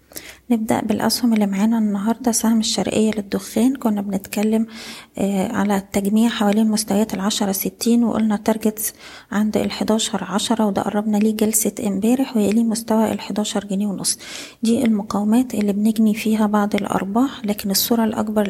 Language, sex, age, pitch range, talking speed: Arabic, female, 20-39, 210-230 Hz, 135 wpm